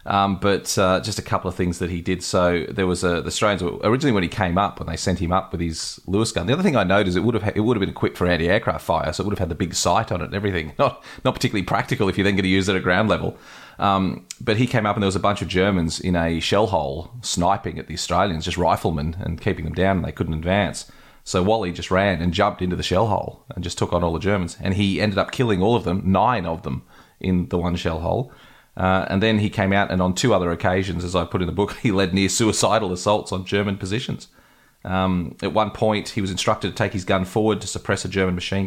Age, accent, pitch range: 30-49, Australian, 85-100 Hz